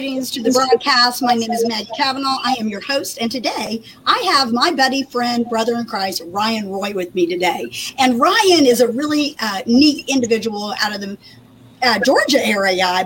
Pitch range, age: 230-290 Hz, 50-69